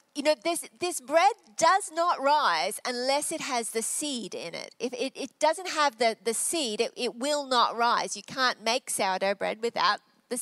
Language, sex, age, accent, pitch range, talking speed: English, female, 40-59, Australian, 235-325 Hz, 200 wpm